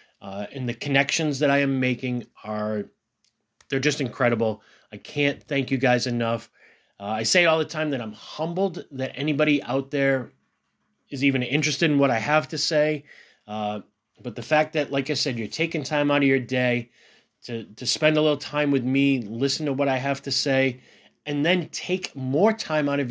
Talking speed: 200 wpm